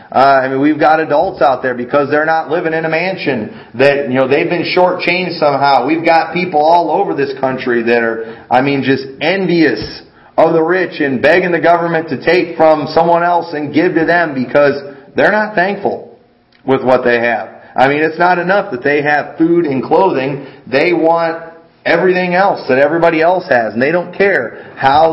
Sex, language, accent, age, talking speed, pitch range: male, English, American, 40-59, 200 wpm, 135-175 Hz